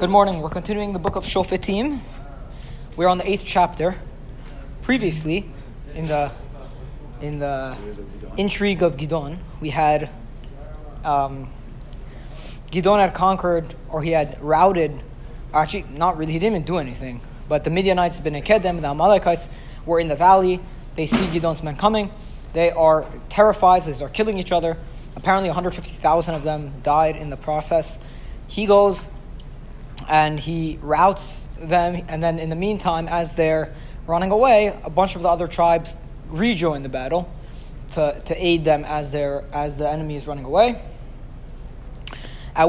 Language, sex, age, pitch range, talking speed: English, male, 20-39, 145-185 Hz, 150 wpm